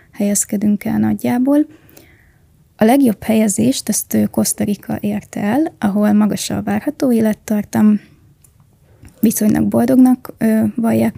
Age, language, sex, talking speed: 20-39, Hungarian, female, 95 wpm